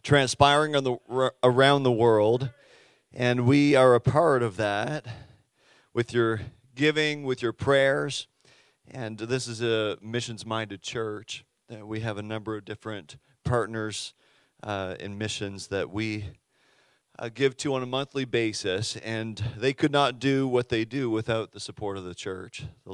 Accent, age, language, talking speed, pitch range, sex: American, 40-59, English, 155 wpm, 105-130 Hz, male